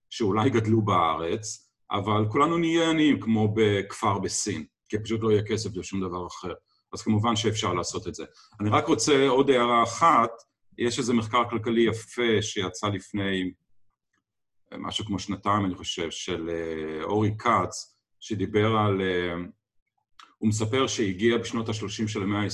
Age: 40-59